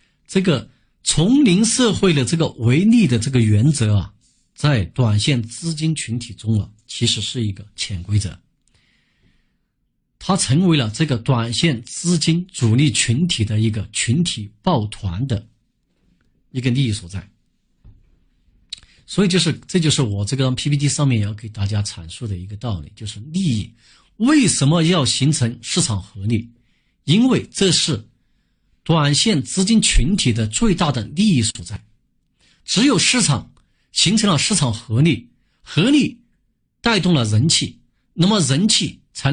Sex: male